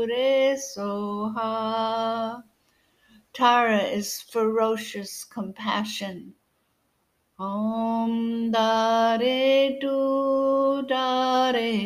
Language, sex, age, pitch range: English, female, 60-79, 215-255 Hz